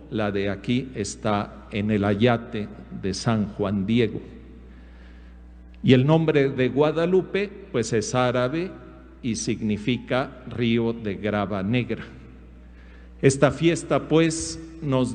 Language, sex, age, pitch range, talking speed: English, male, 50-69, 100-130 Hz, 115 wpm